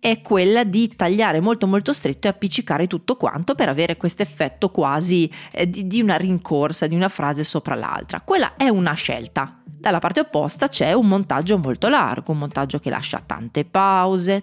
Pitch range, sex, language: 160-210 Hz, female, Italian